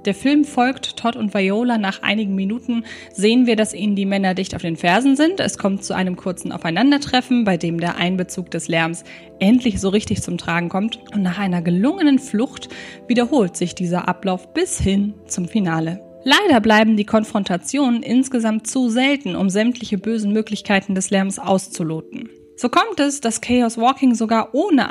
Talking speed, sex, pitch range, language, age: 175 wpm, female, 190-245 Hz, German, 20-39